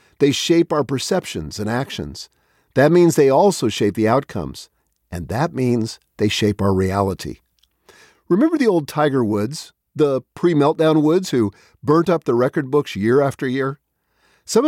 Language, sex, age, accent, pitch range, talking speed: English, male, 50-69, American, 115-175 Hz, 155 wpm